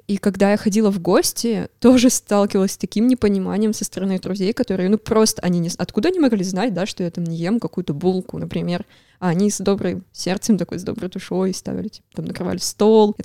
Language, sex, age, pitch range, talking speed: Russian, female, 20-39, 180-210 Hz, 215 wpm